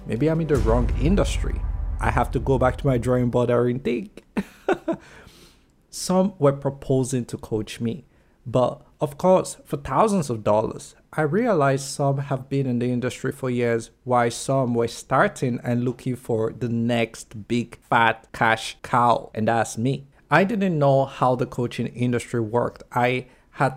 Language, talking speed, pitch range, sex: English, 165 wpm, 120-140 Hz, male